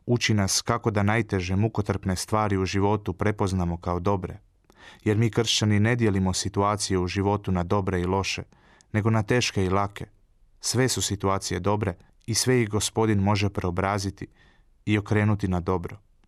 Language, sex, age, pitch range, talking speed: Croatian, male, 30-49, 95-110 Hz, 160 wpm